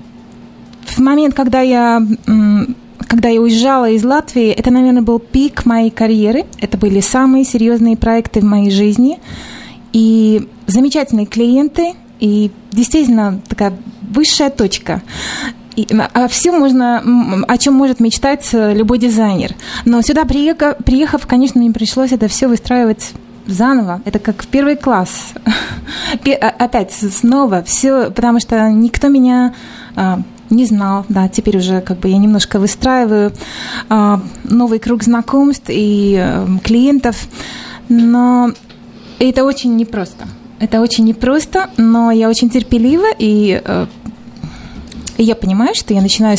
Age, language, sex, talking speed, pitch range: 20-39, Russian, female, 125 wpm, 220-255 Hz